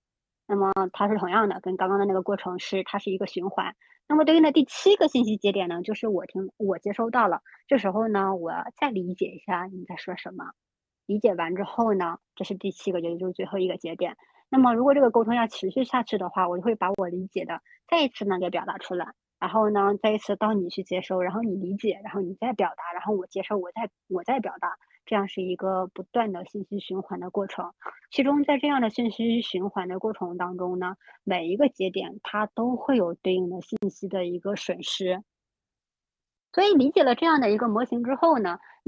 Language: Chinese